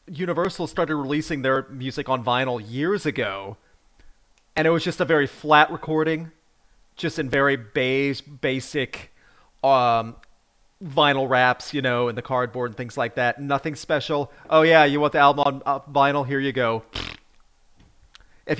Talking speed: 155 wpm